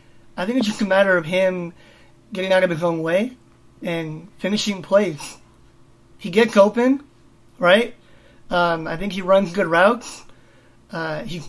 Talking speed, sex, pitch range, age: 155 wpm, male, 160-195 Hz, 30-49